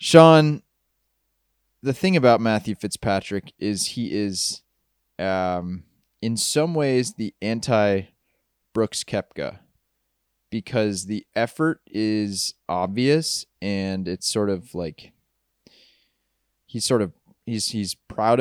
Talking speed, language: 110 wpm, English